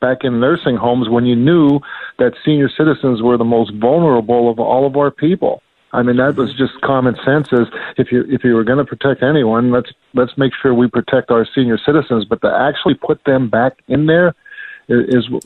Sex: male